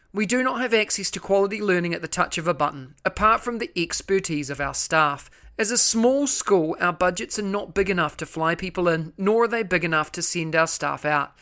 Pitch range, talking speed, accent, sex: 155-205 Hz, 235 wpm, Australian, male